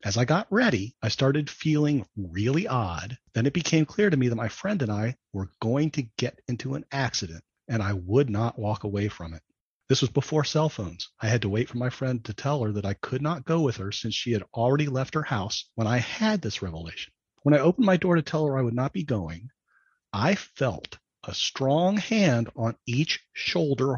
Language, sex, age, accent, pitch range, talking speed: English, male, 40-59, American, 110-145 Hz, 225 wpm